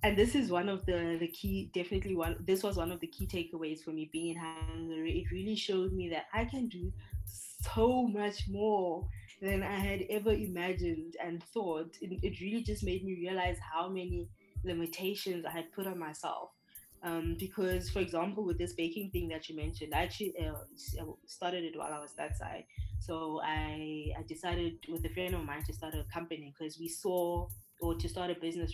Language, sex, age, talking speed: English, female, 20-39, 205 wpm